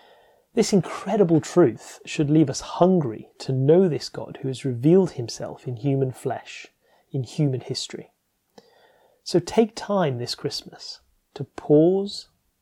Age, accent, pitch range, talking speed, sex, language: 30-49, British, 130-170 Hz, 135 wpm, male, English